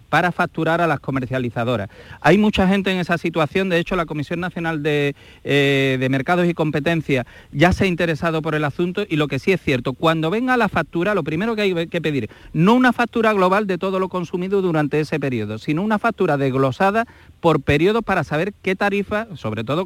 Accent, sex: Spanish, male